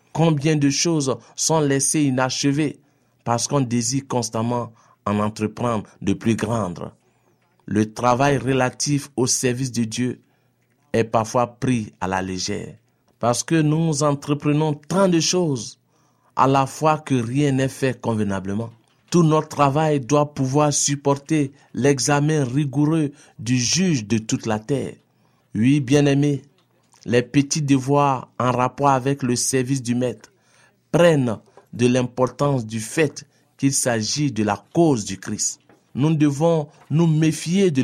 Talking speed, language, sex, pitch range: 135 wpm, French, male, 120-145 Hz